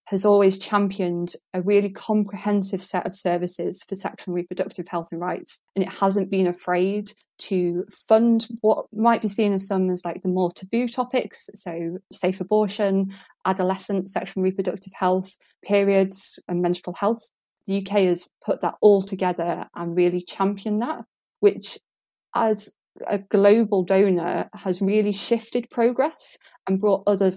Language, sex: English, female